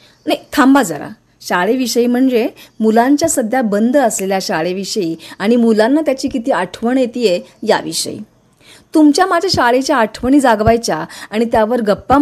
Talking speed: 125 wpm